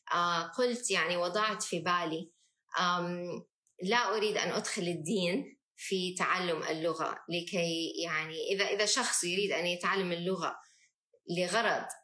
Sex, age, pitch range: female, 20-39, 175-210 Hz